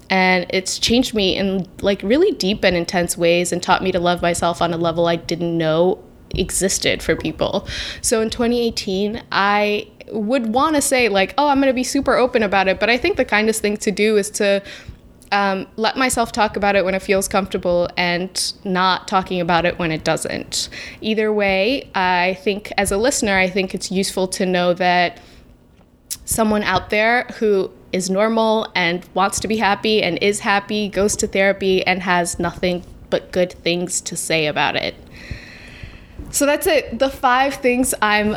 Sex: female